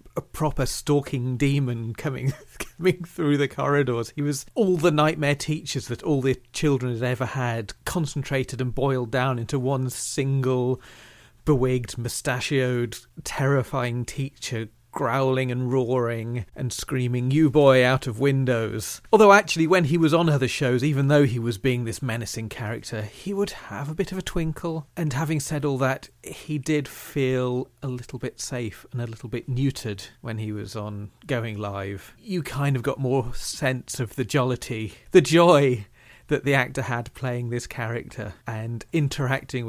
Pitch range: 120-145 Hz